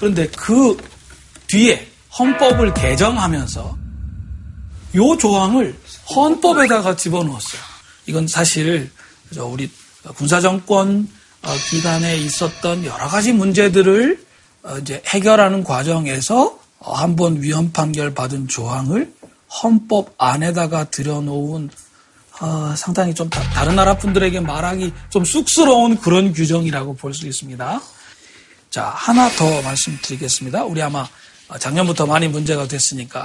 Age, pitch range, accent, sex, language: 40-59, 145-210 Hz, native, male, Korean